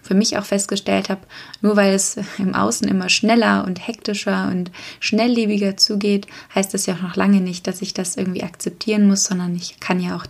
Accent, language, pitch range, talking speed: German, German, 180-205 Hz, 200 wpm